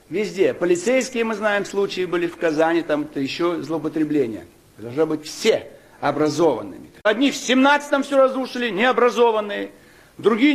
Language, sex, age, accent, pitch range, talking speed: Russian, male, 60-79, native, 180-265 Hz, 125 wpm